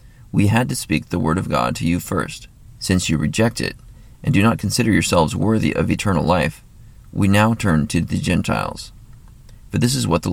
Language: English